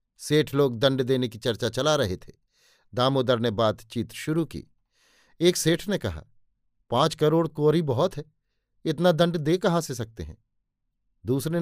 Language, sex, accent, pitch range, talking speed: Hindi, male, native, 120-165 Hz, 160 wpm